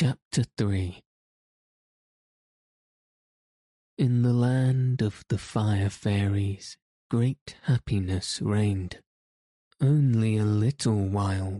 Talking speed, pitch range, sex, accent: 85 wpm, 100-120 Hz, male, British